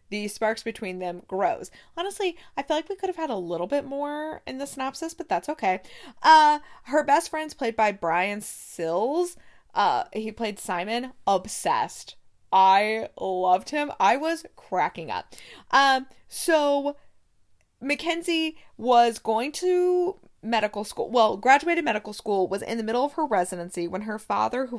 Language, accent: English, American